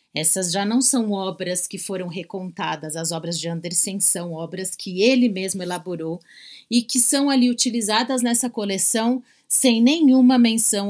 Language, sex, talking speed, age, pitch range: Portuguese, female, 155 wpm, 40-59, 175-240 Hz